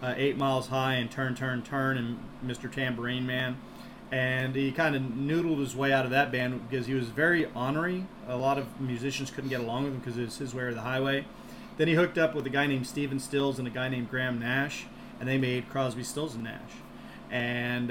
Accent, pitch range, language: American, 120-135 Hz, English